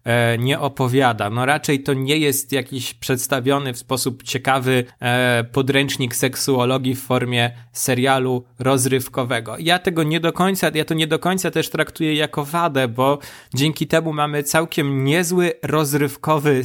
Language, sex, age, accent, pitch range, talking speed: Polish, male, 20-39, native, 125-150 Hz, 140 wpm